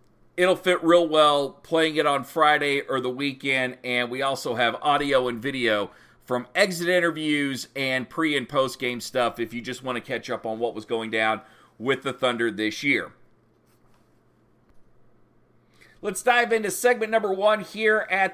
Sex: male